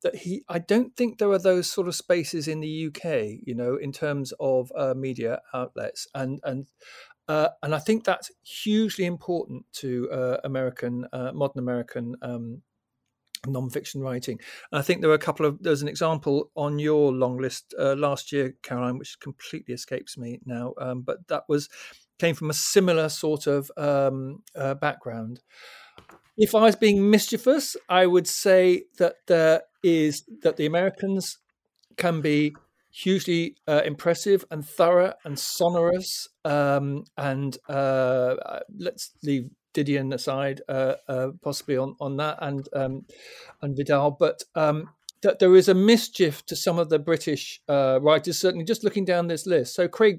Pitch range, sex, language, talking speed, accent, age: 135-180 Hz, male, English, 165 wpm, British, 40-59